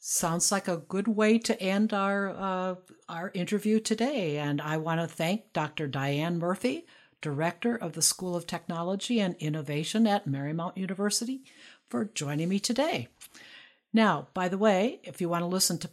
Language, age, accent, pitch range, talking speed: English, 60-79, American, 160-215 Hz, 170 wpm